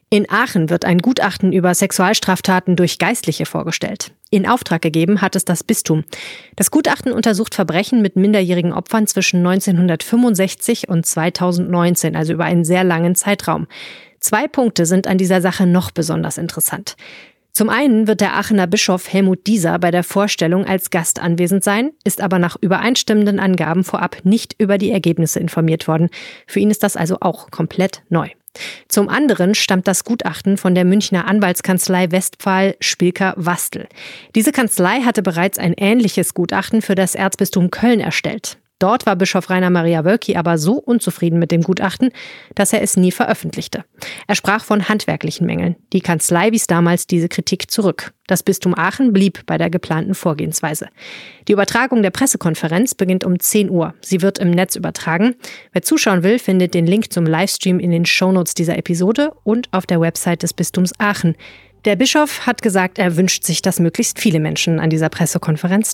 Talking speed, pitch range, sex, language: 170 wpm, 175-210 Hz, female, German